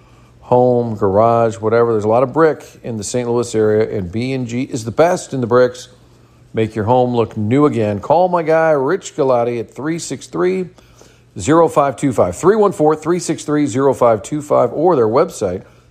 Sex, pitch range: male, 110-135 Hz